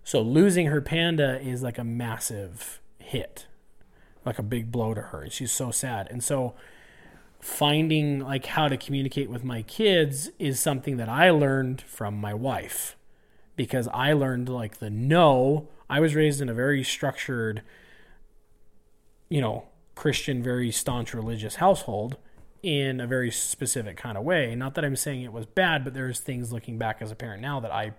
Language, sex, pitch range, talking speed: English, male, 120-150 Hz, 175 wpm